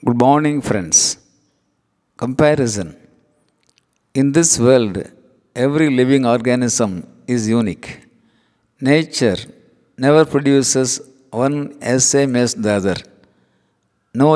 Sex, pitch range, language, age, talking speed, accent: male, 110-135 Hz, Tamil, 50-69, 90 wpm, native